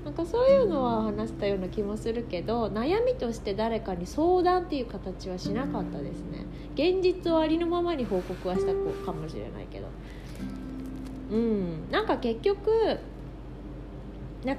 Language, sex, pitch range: Japanese, female, 165-235 Hz